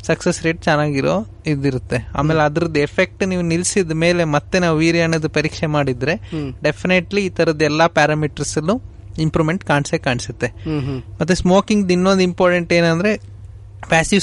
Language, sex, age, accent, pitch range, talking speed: Kannada, male, 30-49, native, 150-175 Hz, 120 wpm